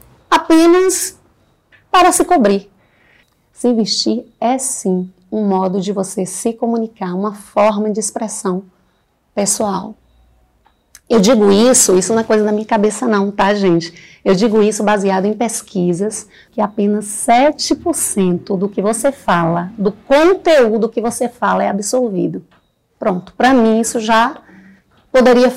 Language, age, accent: Portuguese, 30-49, Brazilian